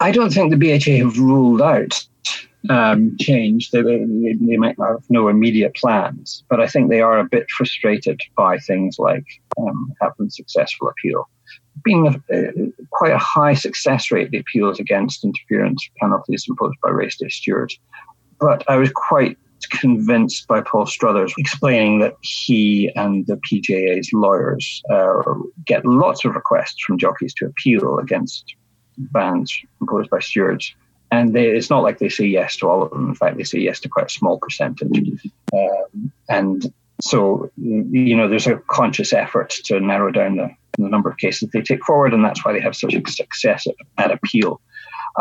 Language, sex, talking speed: English, male, 175 wpm